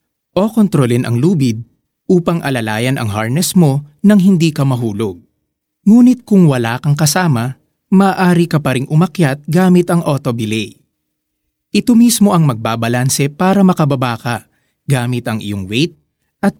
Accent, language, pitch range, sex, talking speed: native, Filipino, 125-180 Hz, male, 135 wpm